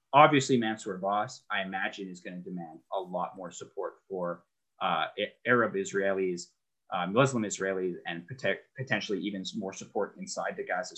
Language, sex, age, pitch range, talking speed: English, male, 20-39, 95-130 Hz, 160 wpm